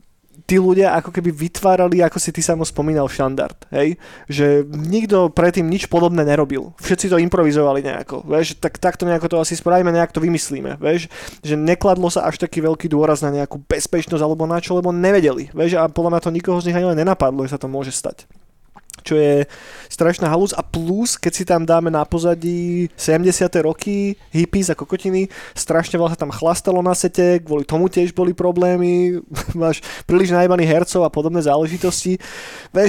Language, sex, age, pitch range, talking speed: Slovak, male, 20-39, 155-180 Hz, 185 wpm